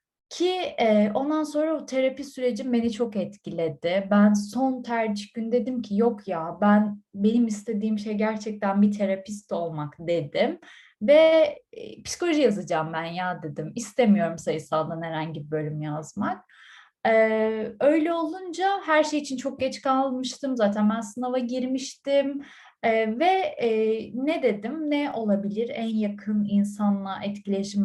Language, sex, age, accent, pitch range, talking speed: Turkish, female, 30-49, native, 200-275 Hz, 130 wpm